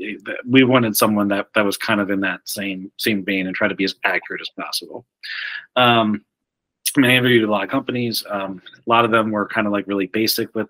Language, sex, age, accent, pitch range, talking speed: English, male, 30-49, American, 95-110 Hz, 235 wpm